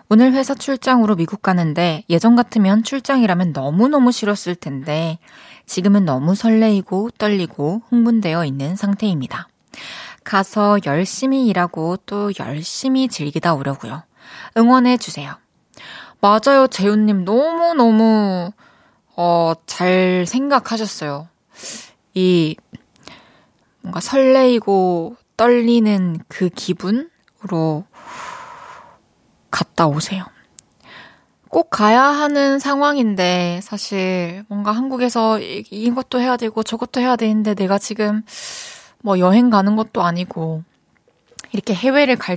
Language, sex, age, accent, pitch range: Korean, female, 20-39, native, 180-235 Hz